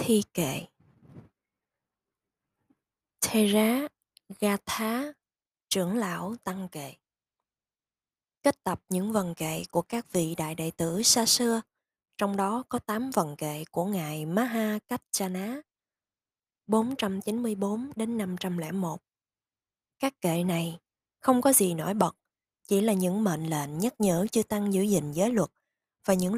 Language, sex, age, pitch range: Vietnamese, female, 20-39, 175-225 Hz